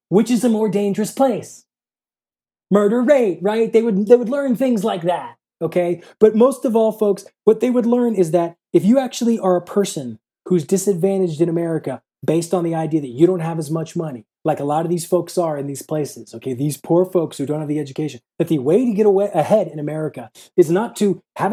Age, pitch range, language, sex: 30-49, 160-230 Hz, English, male